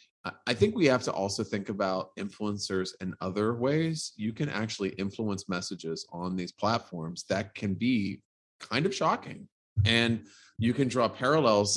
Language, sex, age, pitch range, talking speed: English, male, 30-49, 95-115 Hz, 165 wpm